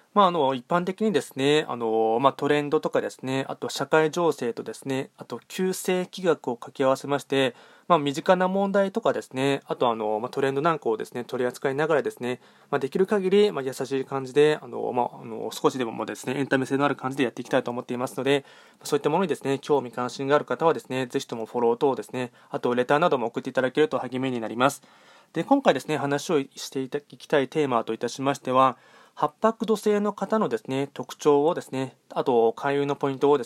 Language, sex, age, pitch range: Japanese, male, 20-39, 125-165 Hz